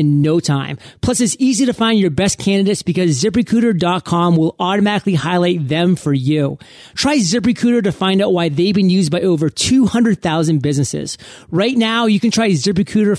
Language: English